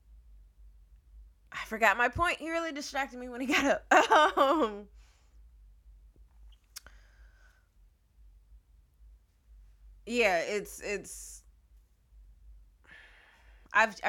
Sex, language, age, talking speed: female, English, 20-39, 70 wpm